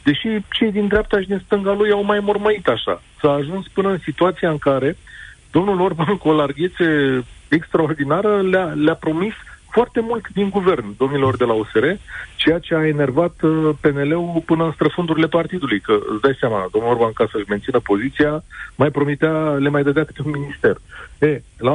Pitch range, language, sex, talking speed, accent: 120-160 Hz, Romanian, male, 180 wpm, native